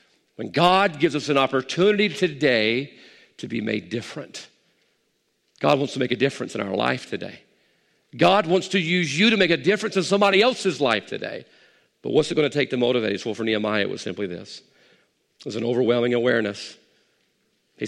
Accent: American